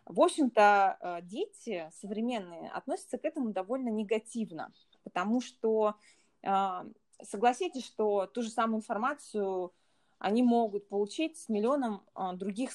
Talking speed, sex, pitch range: 110 wpm, female, 195-245 Hz